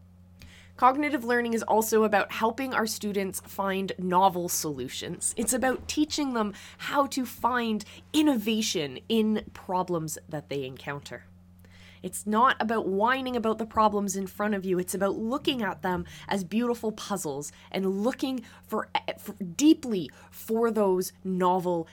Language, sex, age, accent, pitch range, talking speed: English, female, 20-39, American, 170-235 Hz, 140 wpm